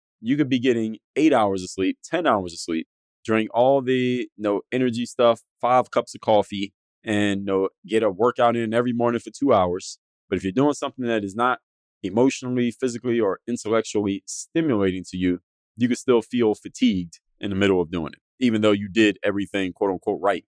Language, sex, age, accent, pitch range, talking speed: English, male, 20-39, American, 95-120 Hz, 200 wpm